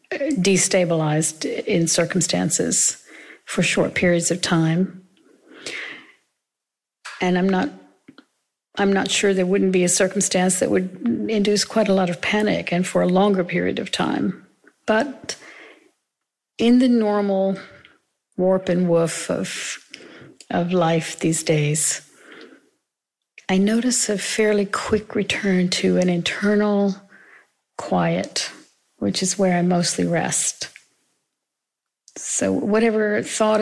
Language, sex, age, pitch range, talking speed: English, female, 50-69, 180-210 Hz, 115 wpm